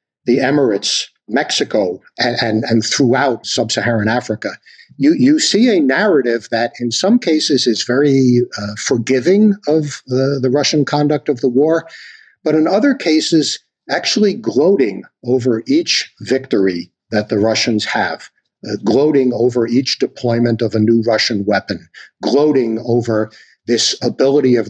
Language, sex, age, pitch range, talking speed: English, male, 60-79, 110-145 Hz, 140 wpm